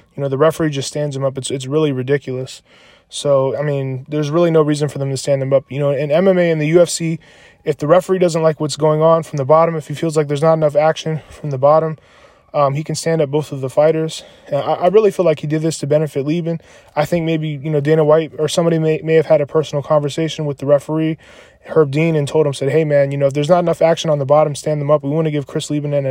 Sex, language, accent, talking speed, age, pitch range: male, English, American, 280 wpm, 20-39, 145-160 Hz